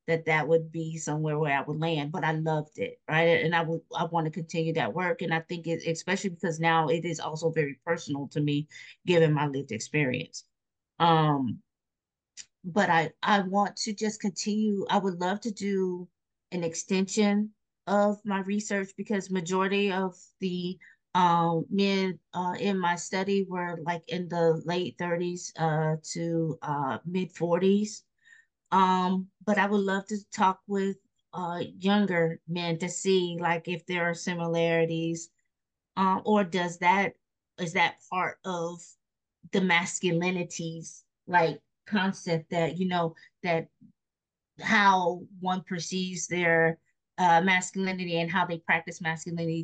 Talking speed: 150 wpm